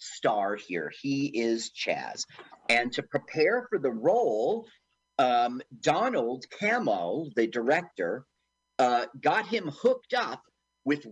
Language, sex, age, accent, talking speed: English, male, 40-59, American, 120 wpm